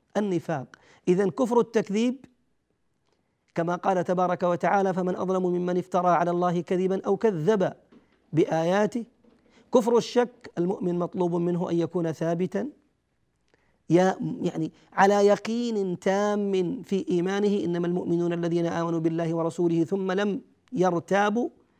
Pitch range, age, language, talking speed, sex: 175-205 Hz, 40-59, Arabic, 115 wpm, male